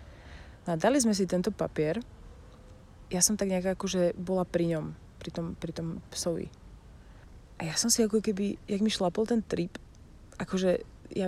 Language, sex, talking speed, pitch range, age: Slovak, female, 170 wpm, 165-190 Hz, 30-49